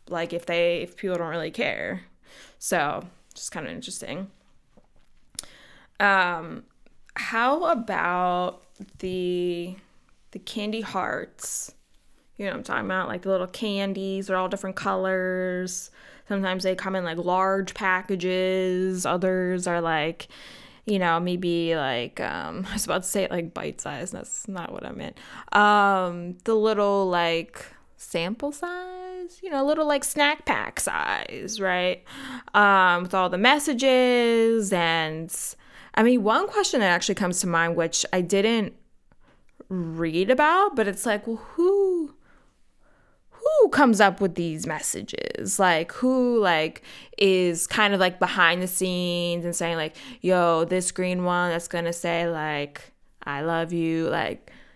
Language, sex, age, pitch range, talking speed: English, female, 20-39, 175-220 Hz, 150 wpm